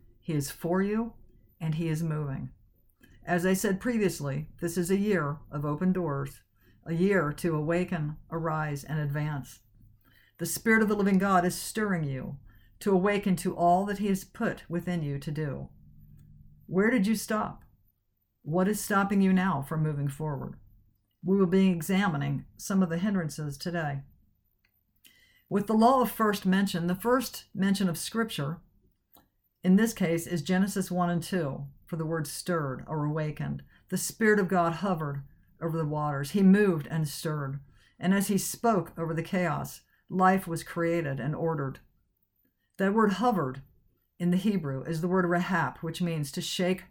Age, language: 50-69, English